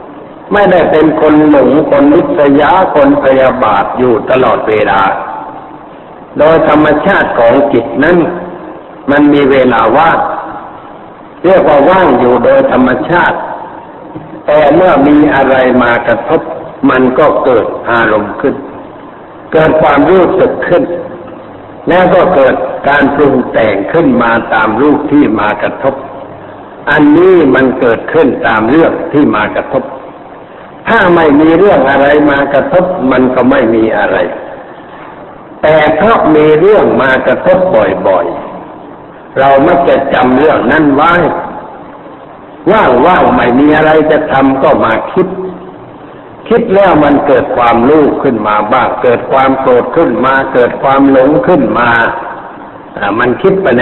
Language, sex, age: Thai, male, 60-79